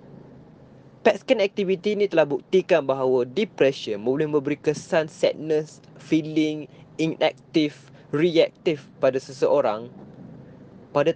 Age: 20-39